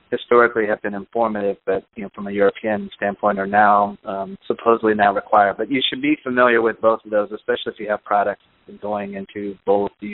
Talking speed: 205 wpm